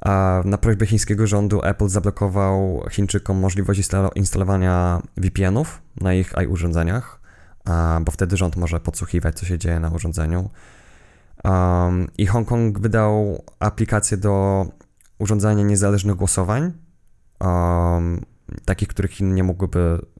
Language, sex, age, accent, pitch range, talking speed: Polish, male, 20-39, native, 90-105 Hz, 105 wpm